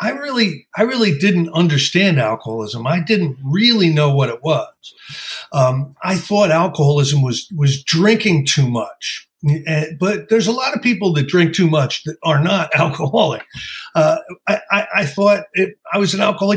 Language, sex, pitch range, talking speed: English, male, 145-200 Hz, 175 wpm